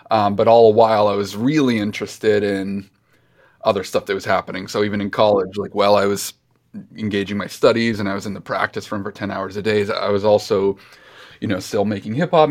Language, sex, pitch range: English, male, 100-115 Hz